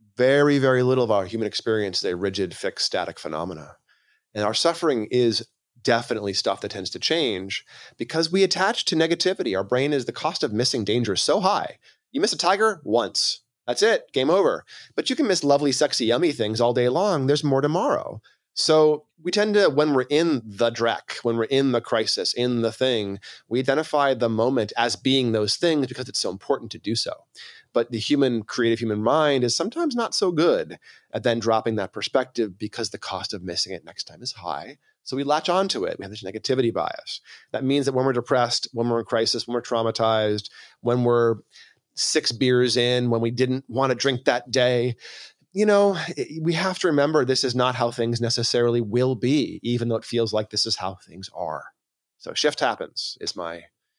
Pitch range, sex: 115-145 Hz, male